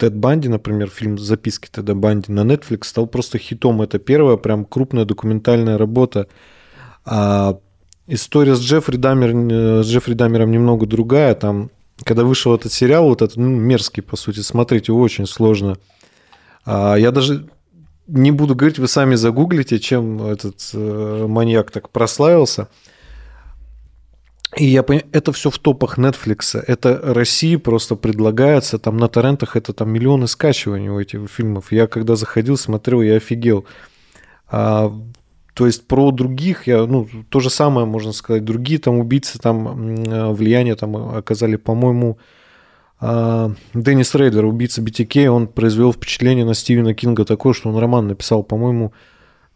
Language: Russian